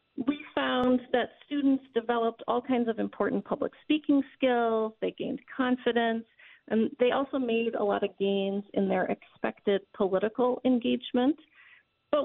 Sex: female